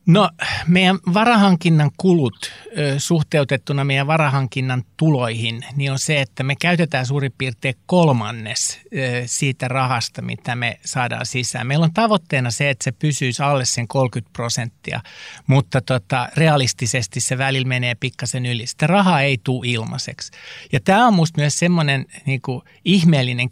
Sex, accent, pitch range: male, native, 125-160 Hz